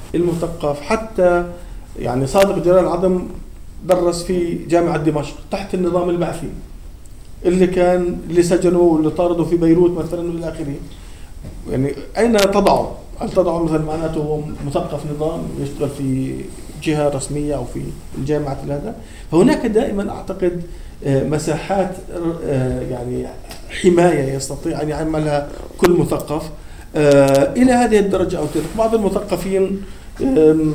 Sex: male